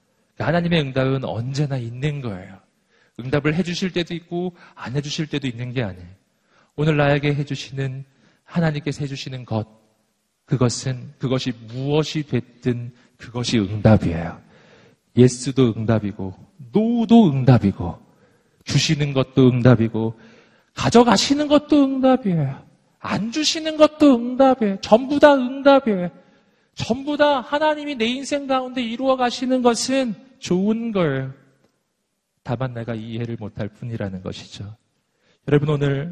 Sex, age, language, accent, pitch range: male, 40-59, Korean, native, 125-195 Hz